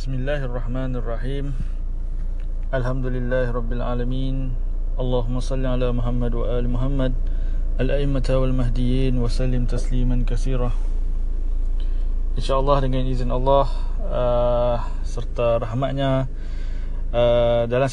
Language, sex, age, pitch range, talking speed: Indonesian, male, 20-39, 100-130 Hz, 75 wpm